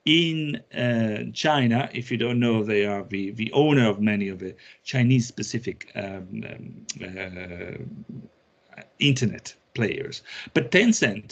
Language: English